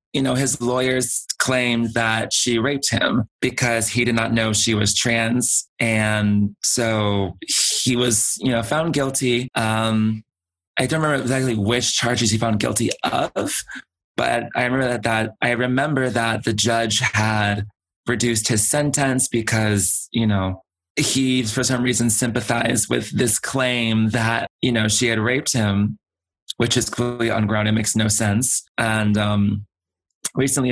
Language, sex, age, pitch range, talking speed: English, male, 20-39, 110-130 Hz, 155 wpm